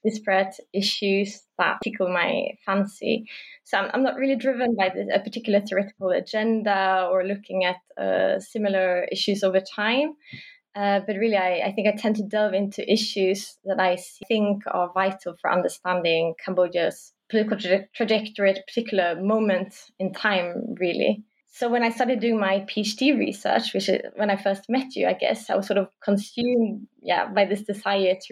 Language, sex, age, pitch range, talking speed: English, female, 20-39, 185-215 Hz, 175 wpm